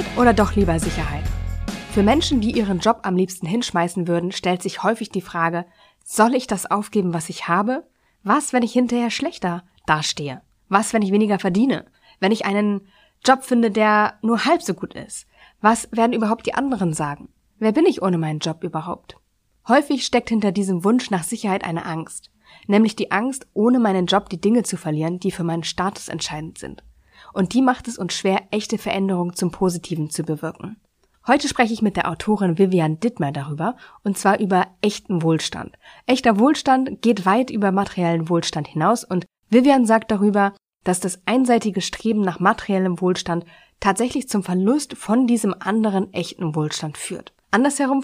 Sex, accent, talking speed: female, German, 175 wpm